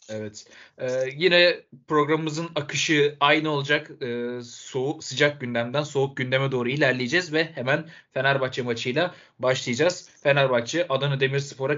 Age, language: 30-49, Turkish